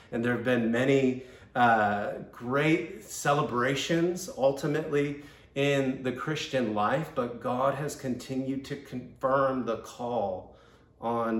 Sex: male